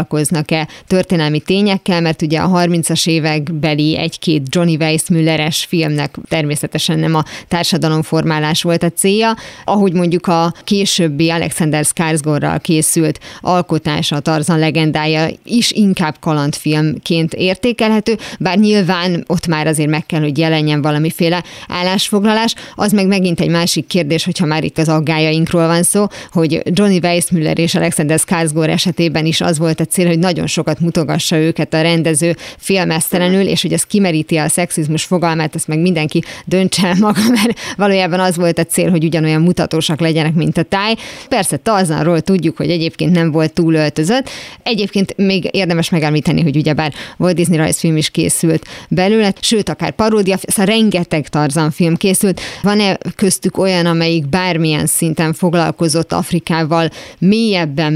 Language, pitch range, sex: Hungarian, 160-185 Hz, female